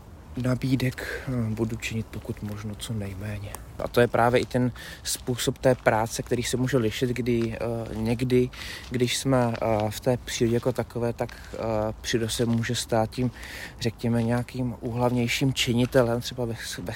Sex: male